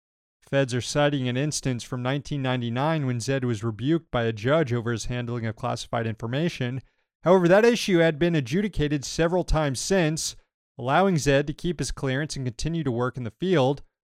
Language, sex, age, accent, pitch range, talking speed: English, male, 30-49, American, 120-160 Hz, 180 wpm